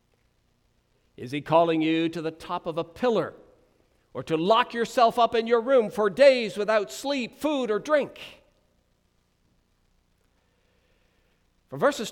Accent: American